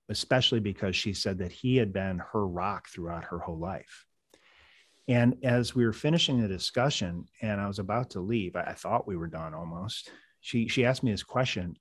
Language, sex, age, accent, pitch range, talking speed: English, male, 40-59, American, 90-120 Hz, 200 wpm